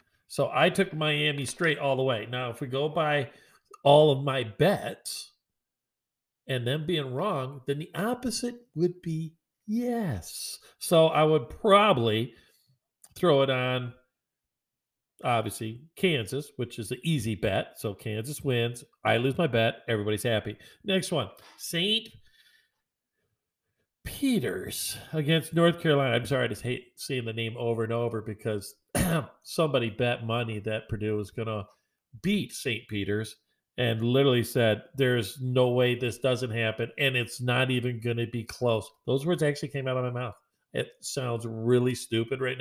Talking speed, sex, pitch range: 155 wpm, male, 115-145 Hz